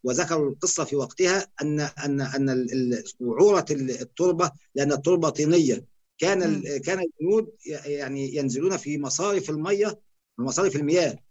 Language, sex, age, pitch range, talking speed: Arabic, male, 50-69, 135-180 Hz, 110 wpm